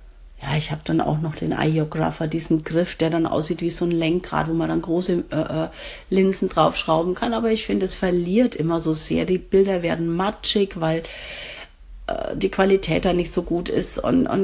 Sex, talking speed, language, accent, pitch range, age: female, 200 wpm, German, German, 160-190 Hz, 40-59